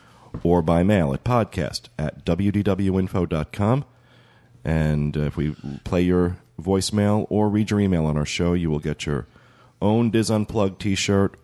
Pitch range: 80-100 Hz